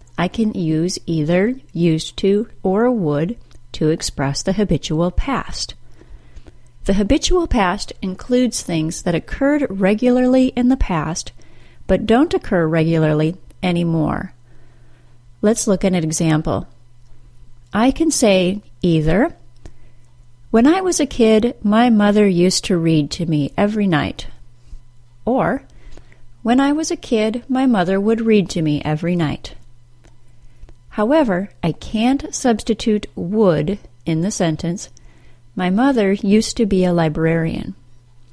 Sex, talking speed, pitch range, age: female, 125 wpm, 155-225 Hz, 40-59